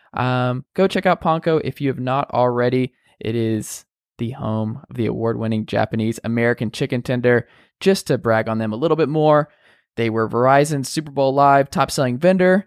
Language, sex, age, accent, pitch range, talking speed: English, male, 20-39, American, 120-165 Hz, 190 wpm